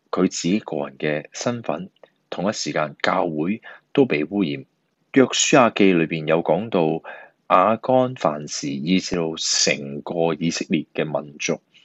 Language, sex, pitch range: Chinese, male, 80-115 Hz